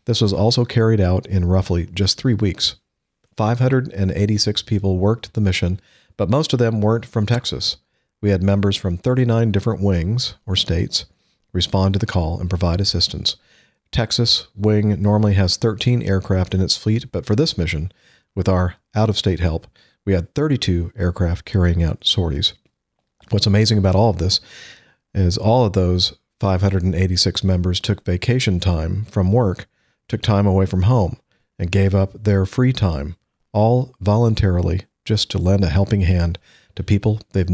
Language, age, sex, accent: English, 50-69, male, American